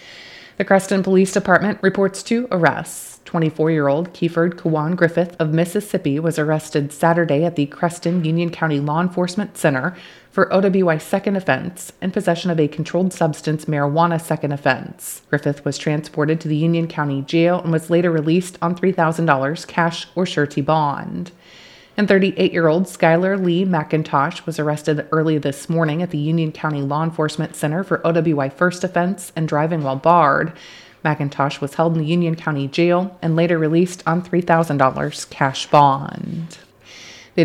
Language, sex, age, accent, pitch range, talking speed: English, female, 30-49, American, 155-180 Hz, 155 wpm